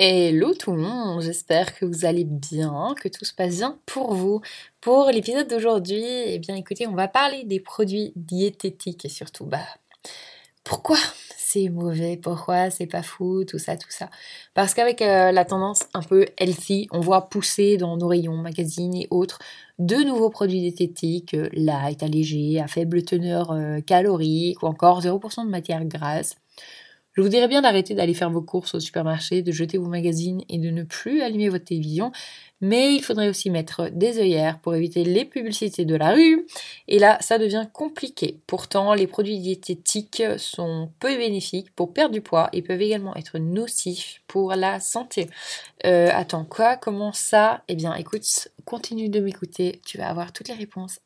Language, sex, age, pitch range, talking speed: French, female, 20-39, 175-215 Hz, 180 wpm